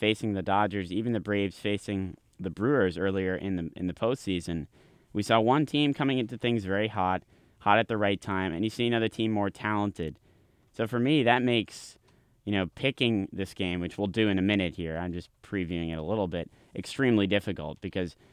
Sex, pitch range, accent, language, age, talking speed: male, 90-110 Hz, American, English, 30-49, 205 wpm